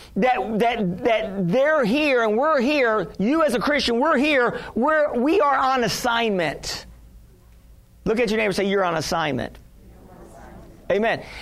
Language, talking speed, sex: English, 150 wpm, male